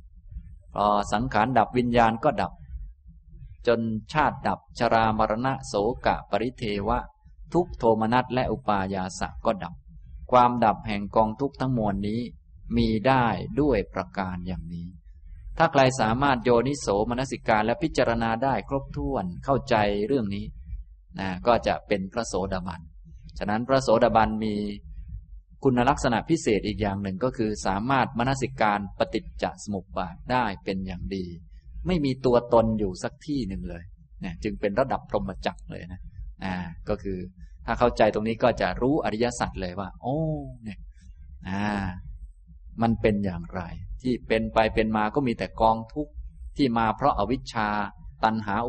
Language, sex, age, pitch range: Thai, male, 20-39, 90-120 Hz